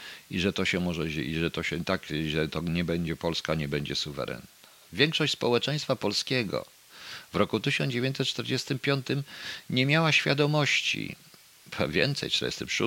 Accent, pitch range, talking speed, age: native, 80-130 Hz, 140 wpm, 50-69